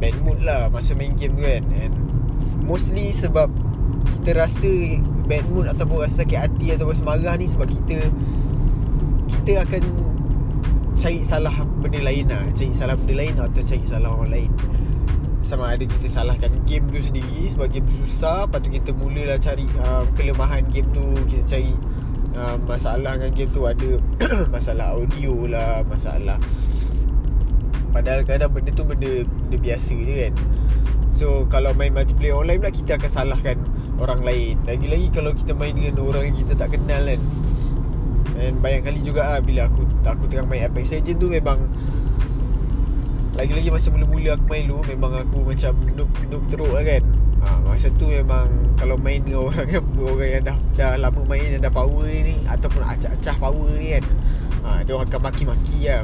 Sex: male